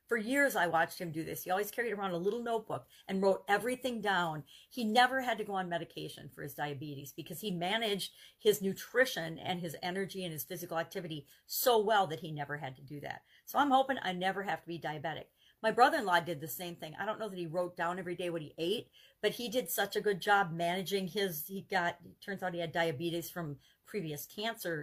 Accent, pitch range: American, 165-200 Hz